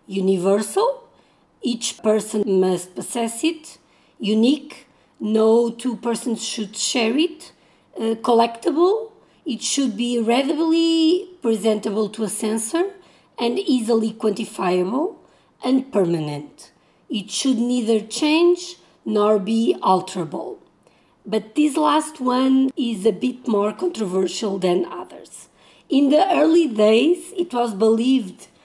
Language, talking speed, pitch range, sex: English, 110 wpm, 205-265 Hz, female